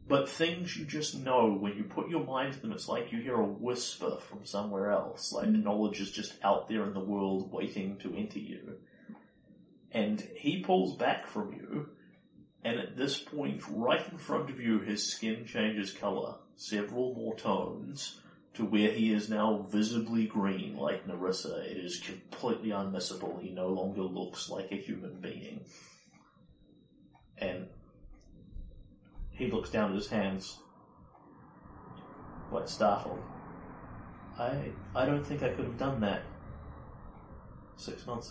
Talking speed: 150 wpm